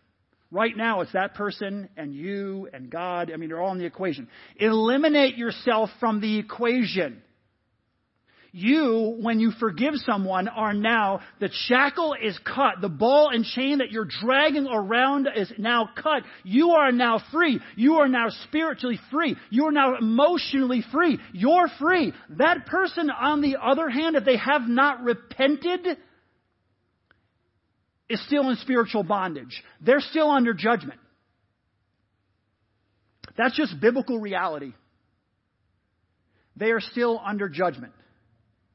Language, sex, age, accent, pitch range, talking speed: English, male, 40-59, American, 175-260 Hz, 135 wpm